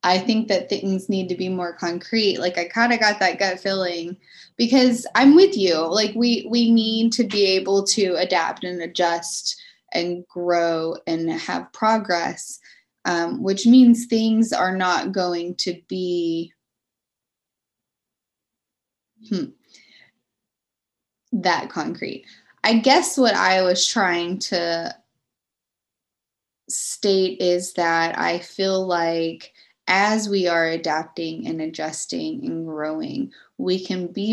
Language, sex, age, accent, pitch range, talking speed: English, female, 20-39, American, 175-225 Hz, 130 wpm